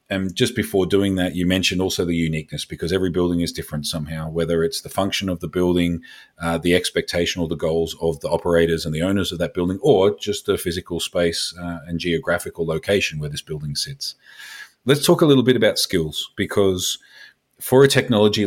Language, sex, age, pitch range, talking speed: English, male, 40-59, 90-115 Hz, 200 wpm